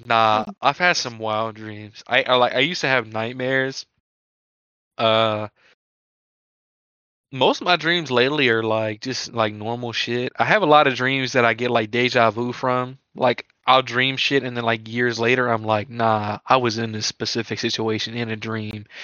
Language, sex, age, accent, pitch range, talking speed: English, male, 20-39, American, 115-145 Hz, 190 wpm